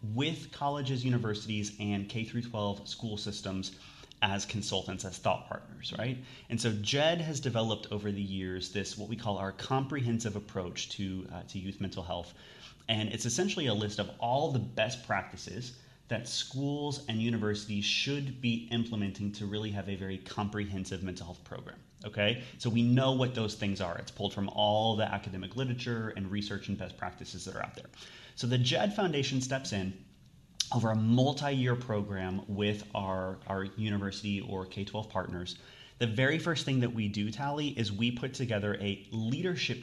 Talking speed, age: 175 wpm, 30-49